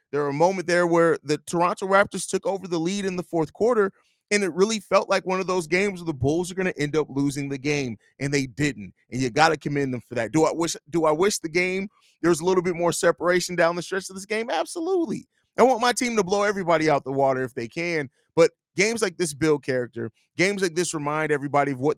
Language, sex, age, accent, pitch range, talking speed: English, male, 30-49, American, 145-175 Hz, 255 wpm